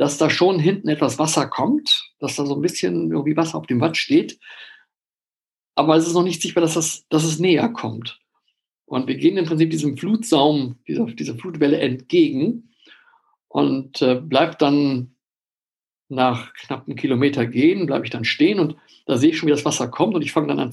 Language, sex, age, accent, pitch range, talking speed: German, male, 50-69, German, 140-180 Hz, 195 wpm